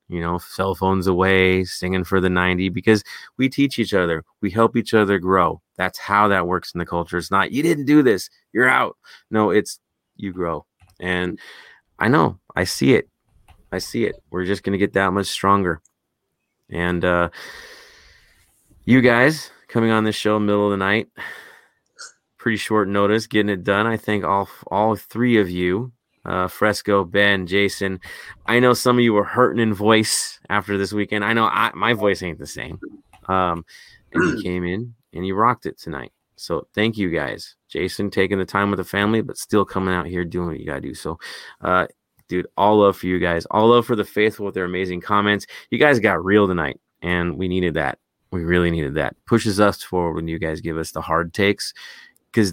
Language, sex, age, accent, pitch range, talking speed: English, male, 30-49, American, 90-105 Hz, 200 wpm